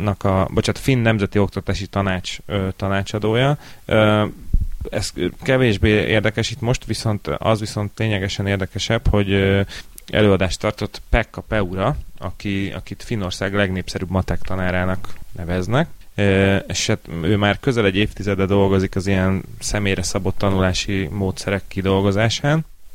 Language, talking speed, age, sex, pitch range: Hungarian, 125 wpm, 30-49, male, 95-105 Hz